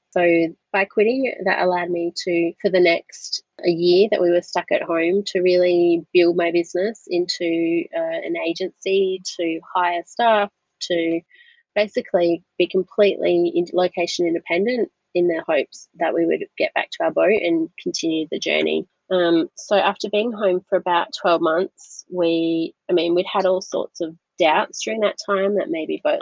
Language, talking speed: English, 175 wpm